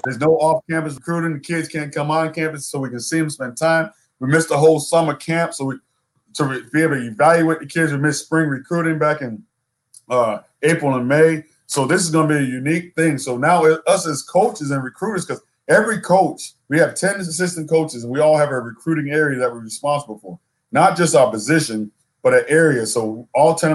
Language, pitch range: English, 135-160 Hz